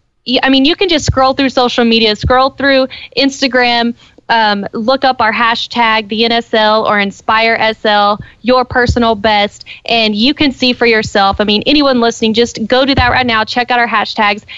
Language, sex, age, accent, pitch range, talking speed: English, female, 20-39, American, 215-250 Hz, 185 wpm